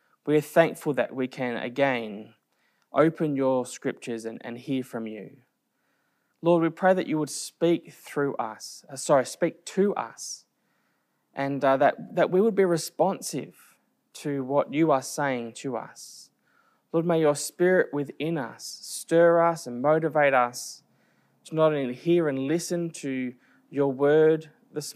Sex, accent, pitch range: male, Australian, 130-170 Hz